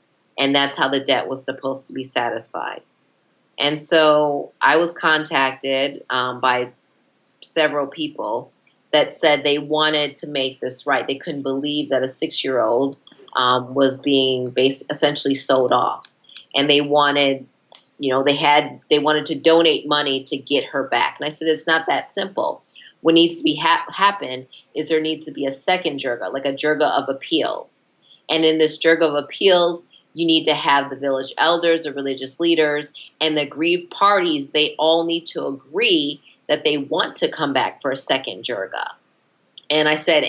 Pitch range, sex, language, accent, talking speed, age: 135-160 Hz, female, English, American, 180 wpm, 30-49